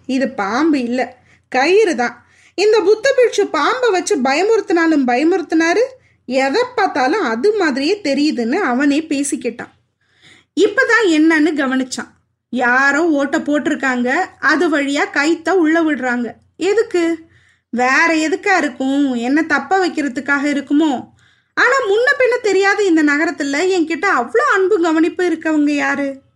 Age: 20-39